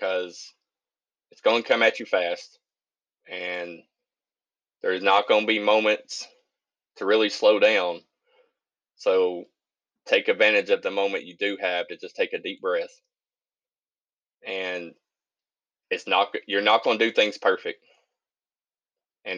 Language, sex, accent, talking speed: English, male, American, 140 wpm